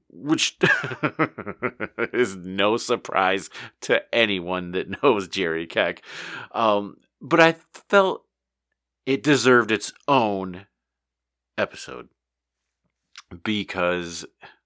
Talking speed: 80 wpm